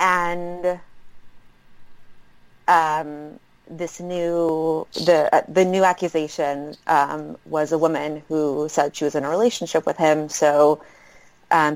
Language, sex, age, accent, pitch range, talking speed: English, female, 30-49, American, 150-175 Hz, 120 wpm